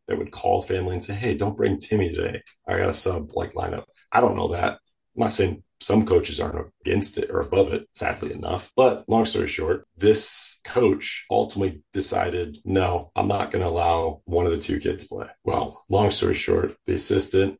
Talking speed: 210 wpm